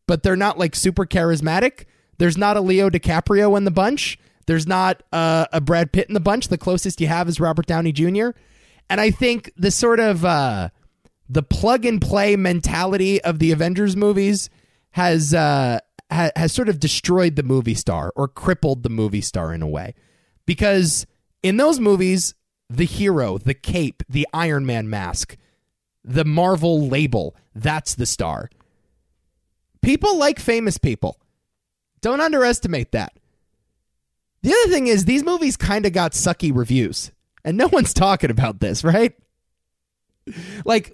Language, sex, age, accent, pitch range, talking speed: English, male, 20-39, American, 135-205 Hz, 155 wpm